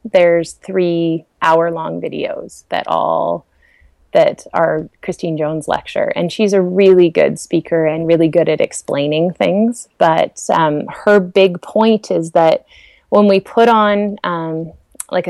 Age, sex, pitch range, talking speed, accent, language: 20-39, female, 165-195 Hz, 145 wpm, American, English